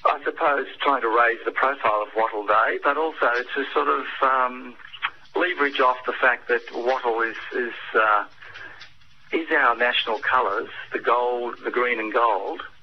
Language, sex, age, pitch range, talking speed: English, male, 40-59, 110-125 Hz, 165 wpm